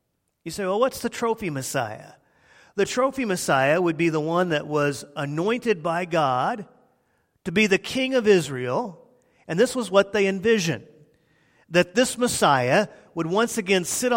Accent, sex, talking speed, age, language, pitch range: American, male, 160 wpm, 40-59, English, 160-220 Hz